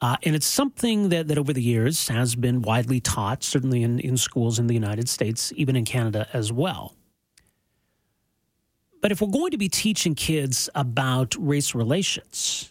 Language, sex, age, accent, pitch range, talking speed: English, male, 40-59, American, 120-165 Hz, 175 wpm